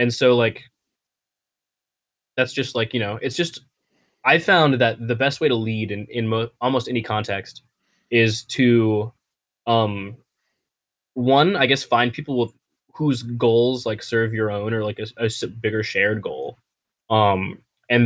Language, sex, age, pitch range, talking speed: English, male, 10-29, 110-130 Hz, 160 wpm